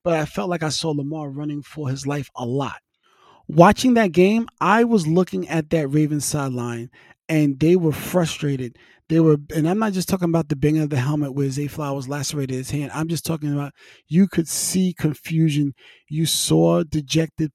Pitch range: 145-170 Hz